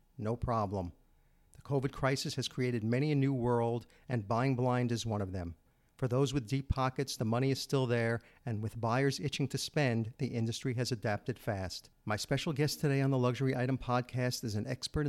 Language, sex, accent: English, male, American